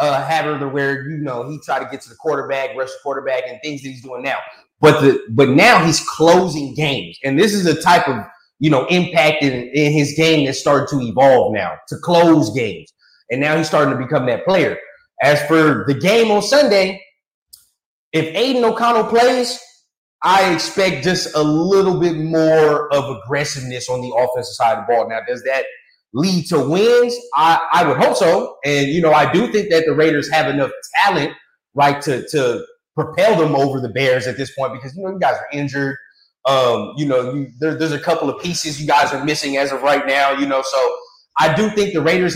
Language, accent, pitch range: English, American, 140-180 Hz